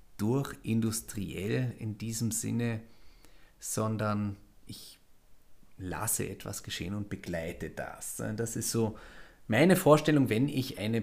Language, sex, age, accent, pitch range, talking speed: German, male, 30-49, German, 105-130 Hz, 115 wpm